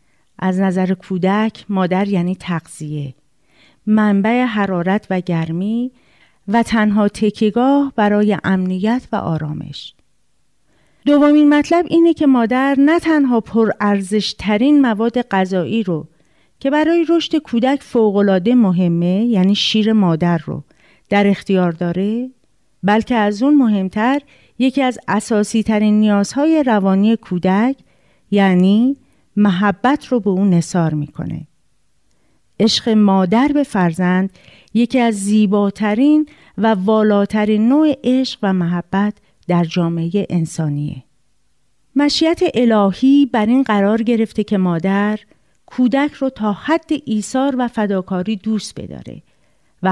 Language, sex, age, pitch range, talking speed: Persian, female, 40-59, 190-250 Hz, 110 wpm